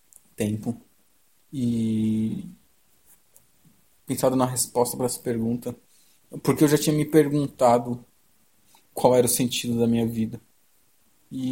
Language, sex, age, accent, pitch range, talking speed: Portuguese, male, 20-39, Brazilian, 120-150 Hz, 115 wpm